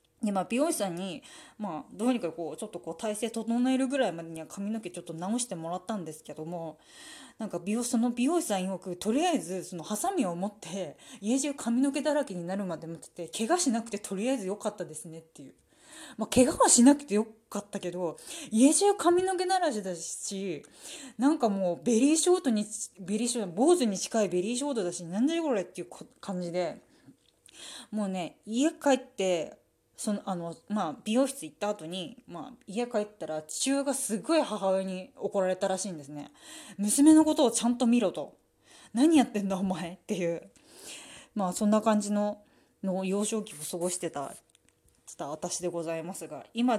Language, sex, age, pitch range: Japanese, female, 20-39, 180-265 Hz